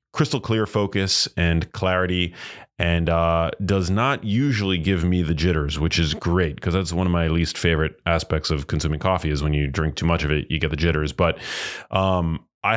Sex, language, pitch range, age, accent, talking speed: male, English, 85-105 Hz, 30-49, American, 200 wpm